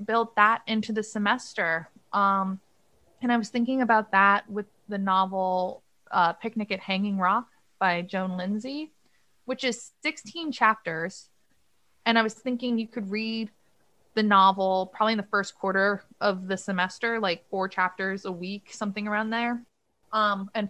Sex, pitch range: female, 185-225 Hz